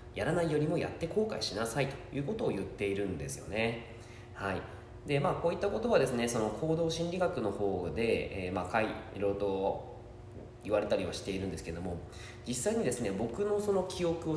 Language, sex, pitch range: Japanese, male, 95-145 Hz